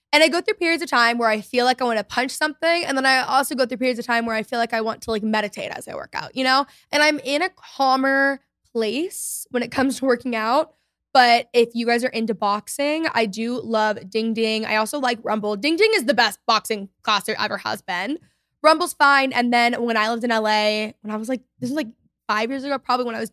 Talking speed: 260 wpm